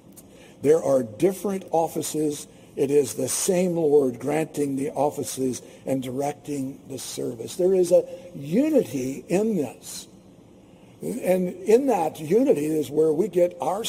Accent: American